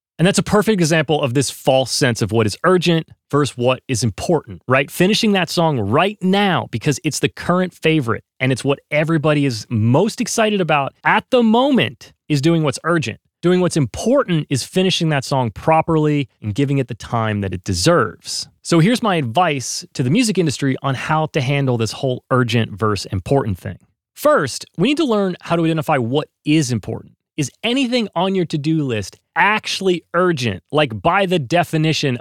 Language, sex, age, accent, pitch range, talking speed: English, male, 30-49, American, 130-175 Hz, 185 wpm